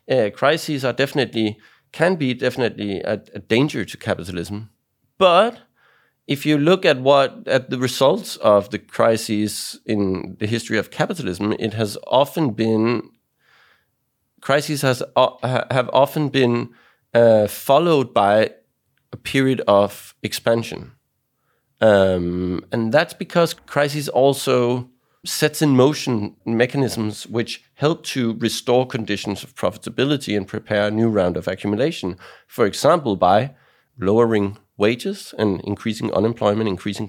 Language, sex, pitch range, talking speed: English, male, 105-135 Hz, 130 wpm